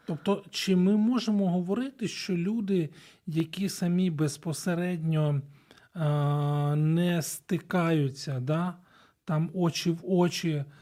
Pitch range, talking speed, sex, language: 145-180 Hz, 100 wpm, male, Ukrainian